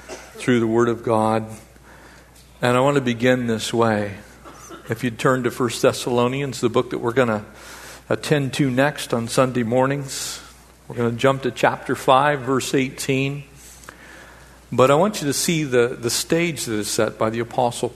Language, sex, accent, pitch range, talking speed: English, male, American, 110-150 Hz, 180 wpm